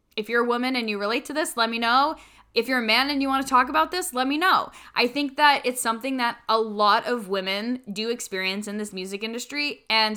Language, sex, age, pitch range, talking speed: English, female, 10-29, 205-255 Hz, 255 wpm